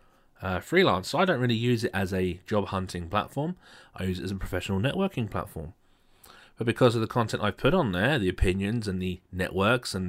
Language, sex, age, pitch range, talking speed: English, male, 40-59, 100-130 Hz, 220 wpm